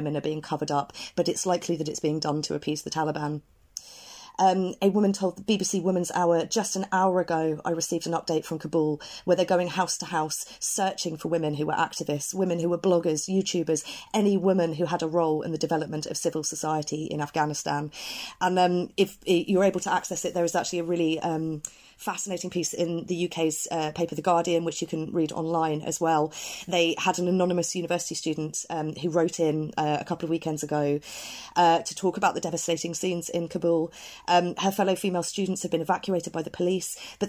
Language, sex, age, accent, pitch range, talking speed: English, female, 30-49, British, 160-190 Hz, 210 wpm